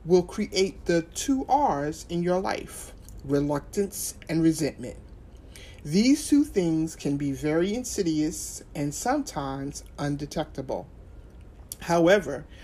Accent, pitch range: American, 145-190 Hz